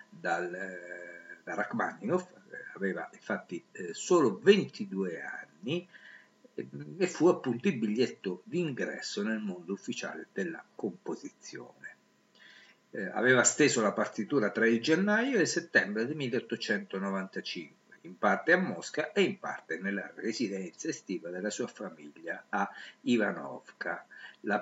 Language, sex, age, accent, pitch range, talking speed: Italian, male, 50-69, native, 115-195 Hz, 115 wpm